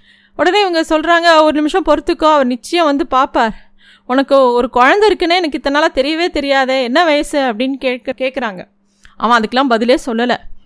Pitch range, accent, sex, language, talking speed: 235-295 Hz, native, female, Tamil, 160 wpm